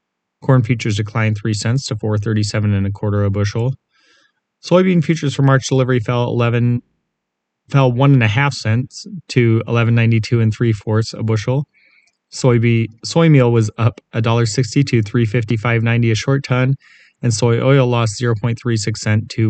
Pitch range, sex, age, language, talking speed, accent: 110-125 Hz, male, 20-39, English, 185 wpm, American